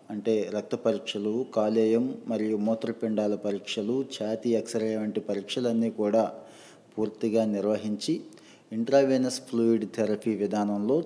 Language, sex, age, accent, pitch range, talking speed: Telugu, male, 20-39, native, 105-115 Hz, 105 wpm